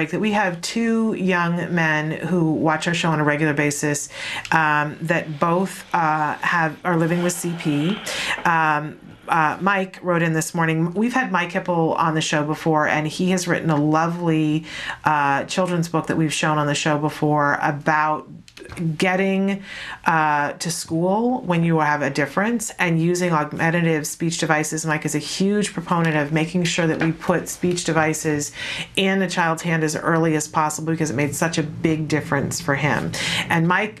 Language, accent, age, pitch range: English, American, 40-59, 150-175 Hz